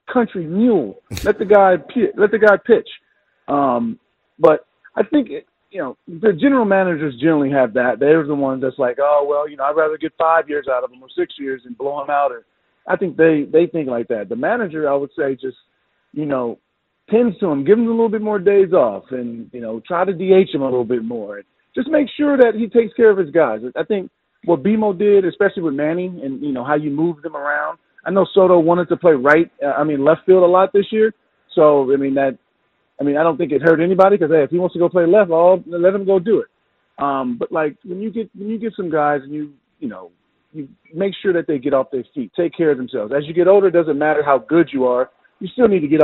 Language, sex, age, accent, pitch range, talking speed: English, male, 40-59, American, 145-200 Hz, 255 wpm